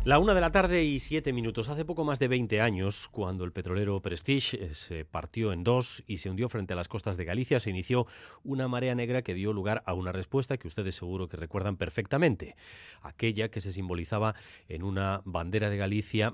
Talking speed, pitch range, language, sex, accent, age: 210 wpm, 95-125 Hz, Spanish, male, Spanish, 30-49